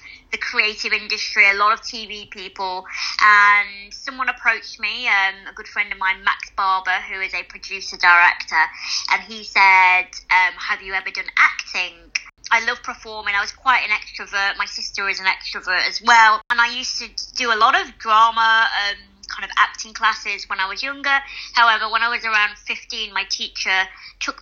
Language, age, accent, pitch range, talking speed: English, 20-39, British, 190-230 Hz, 185 wpm